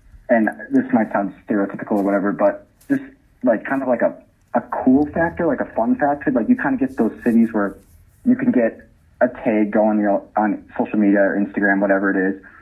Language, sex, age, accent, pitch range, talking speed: English, male, 30-49, American, 100-120 Hz, 205 wpm